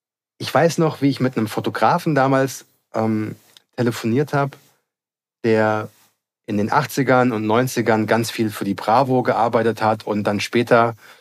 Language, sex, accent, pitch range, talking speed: German, male, German, 110-145 Hz, 150 wpm